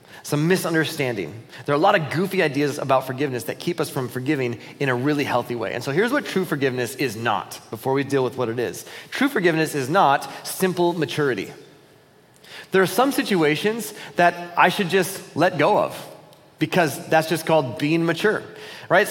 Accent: American